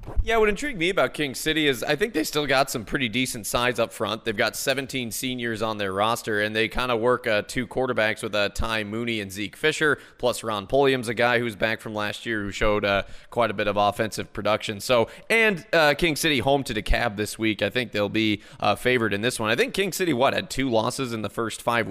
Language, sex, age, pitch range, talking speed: English, male, 20-39, 110-135 Hz, 245 wpm